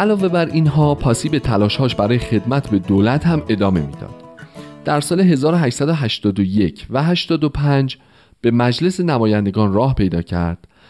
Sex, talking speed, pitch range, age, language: male, 125 wpm, 95-145 Hz, 40-59, Persian